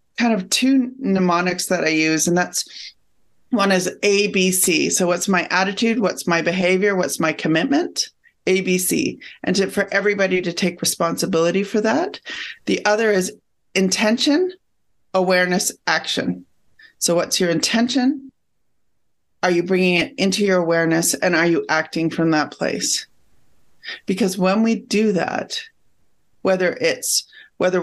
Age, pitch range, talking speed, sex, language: 30-49, 170-210 Hz, 135 wpm, female, English